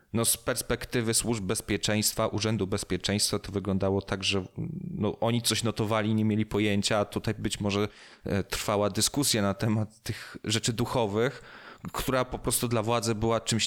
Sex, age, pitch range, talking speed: male, 30-49, 110-130 Hz, 150 wpm